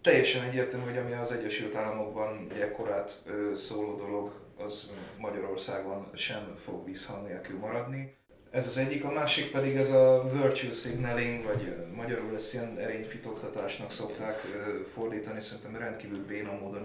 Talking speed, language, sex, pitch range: 140 wpm, Hungarian, male, 105-130 Hz